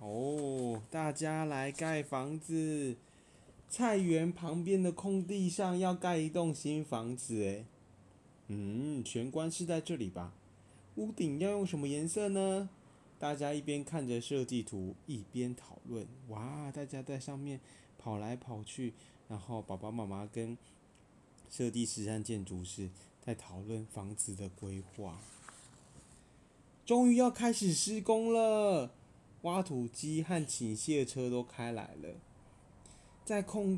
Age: 20-39